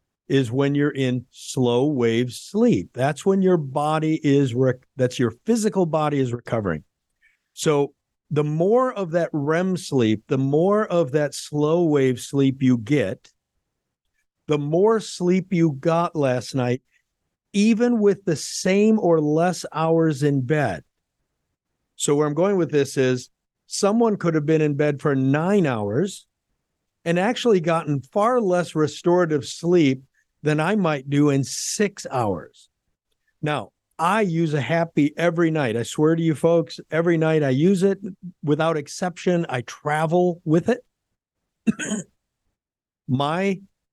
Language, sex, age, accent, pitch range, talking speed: English, male, 50-69, American, 135-175 Hz, 140 wpm